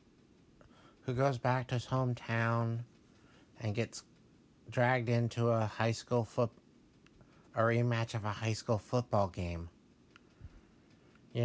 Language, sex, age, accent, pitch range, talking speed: English, male, 60-79, American, 110-135 Hz, 120 wpm